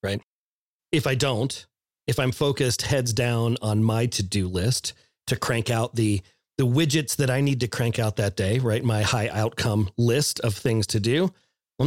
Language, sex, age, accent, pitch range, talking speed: English, male, 40-59, American, 115-145 Hz, 185 wpm